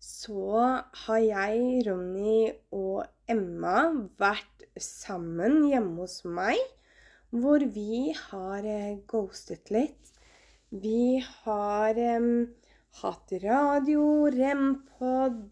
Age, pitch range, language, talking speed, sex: 20-39, 205-260 Hz, Danish, 85 wpm, female